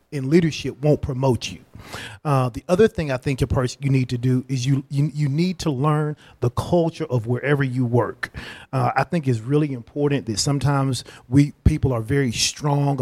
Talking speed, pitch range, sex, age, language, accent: 200 wpm, 130-160 Hz, male, 40-59, English, American